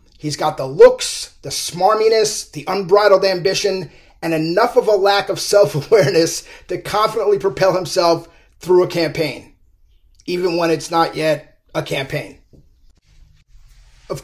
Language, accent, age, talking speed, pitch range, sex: English, American, 30-49, 130 wpm, 160-205 Hz, male